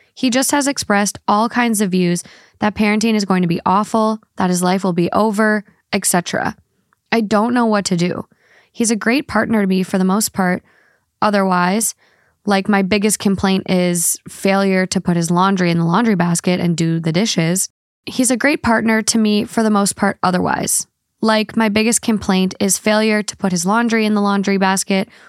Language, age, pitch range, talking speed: English, 10-29, 185-220 Hz, 195 wpm